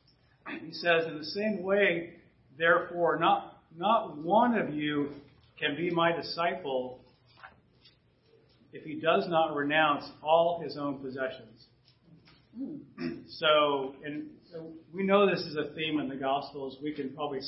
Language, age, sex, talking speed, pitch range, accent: English, 40-59, male, 135 wpm, 145-185 Hz, American